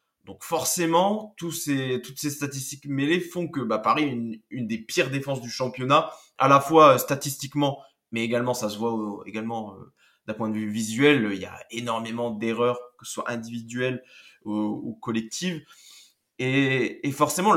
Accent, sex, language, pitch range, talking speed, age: French, male, French, 120-160 Hz, 180 wpm, 20-39